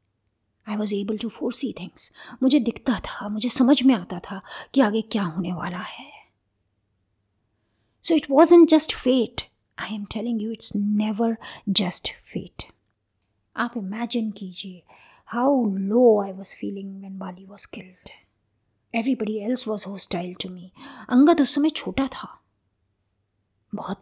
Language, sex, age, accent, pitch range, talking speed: Hindi, female, 20-39, native, 175-255 Hz, 145 wpm